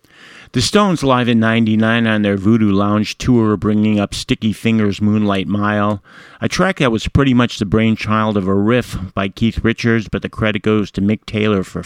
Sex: male